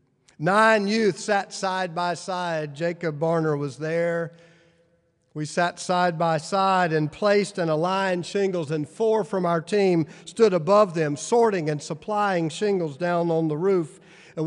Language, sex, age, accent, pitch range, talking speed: English, male, 50-69, American, 155-200 Hz, 145 wpm